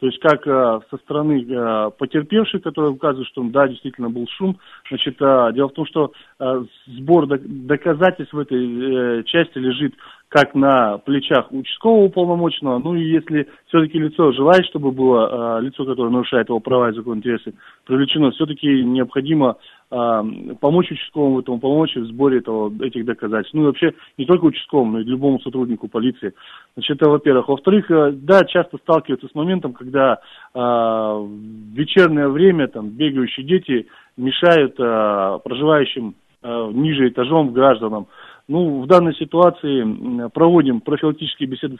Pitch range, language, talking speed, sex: 125-155 Hz, Russian, 140 wpm, male